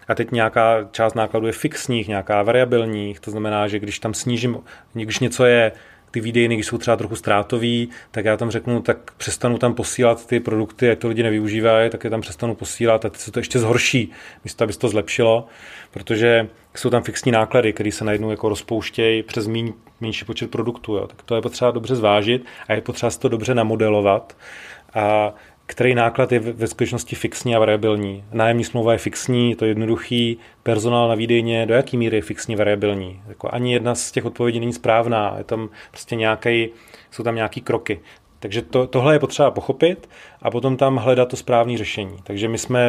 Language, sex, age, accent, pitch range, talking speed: Czech, male, 30-49, native, 110-120 Hz, 195 wpm